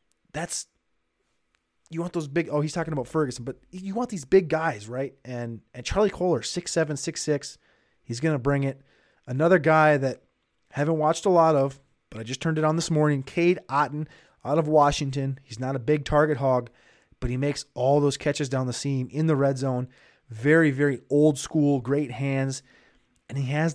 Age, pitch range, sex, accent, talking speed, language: 30-49, 130-155 Hz, male, American, 195 wpm, English